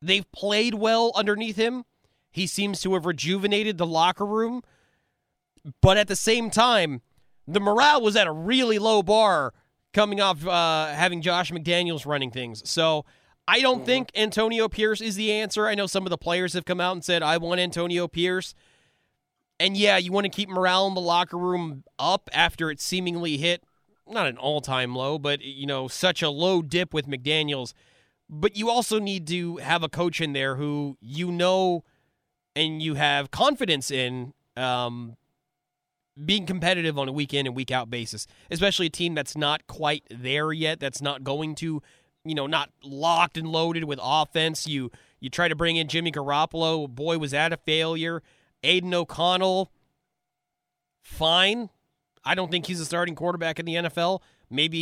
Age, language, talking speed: 30-49, English, 175 wpm